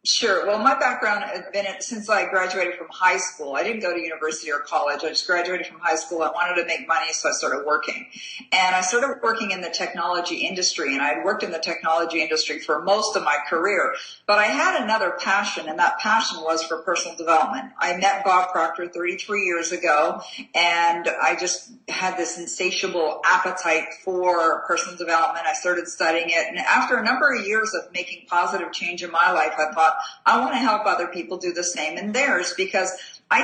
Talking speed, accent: 210 wpm, American